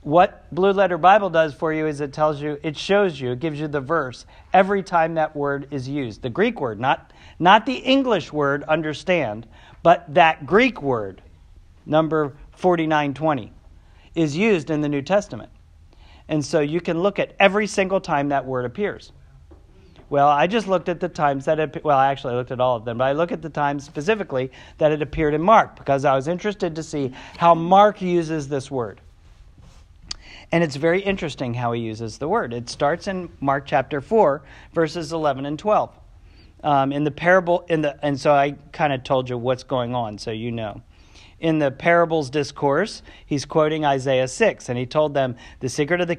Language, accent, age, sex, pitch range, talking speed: English, American, 50-69, male, 125-170 Hz, 200 wpm